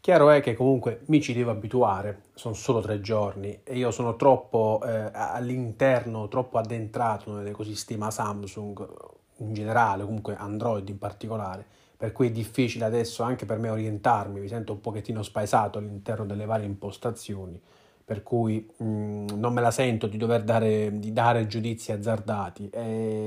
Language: Italian